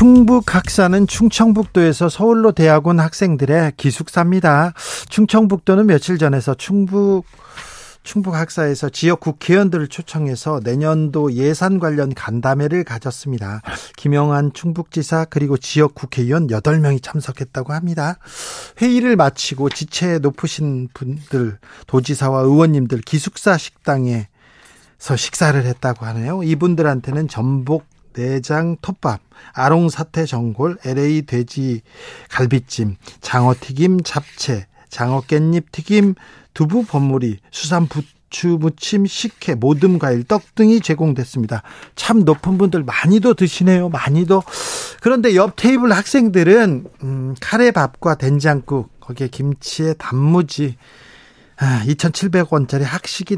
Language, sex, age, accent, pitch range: Korean, male, 40-59, native, 135-180 Hz